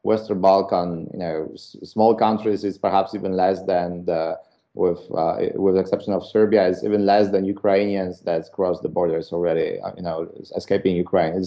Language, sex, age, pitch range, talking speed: English, male, 30-49, 95-115 Hz, 175 wpm